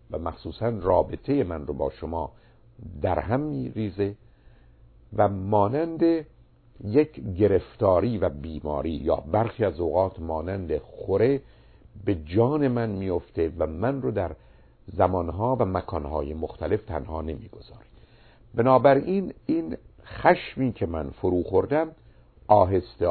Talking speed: 115 wpm